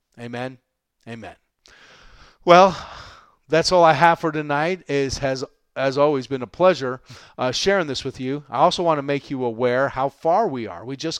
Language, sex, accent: English, male, American